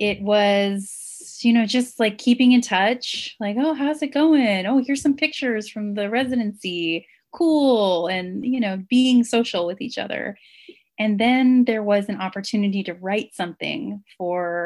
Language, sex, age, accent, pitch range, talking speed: English, female, 30-49, American, 190-245 Hz, 165 wpm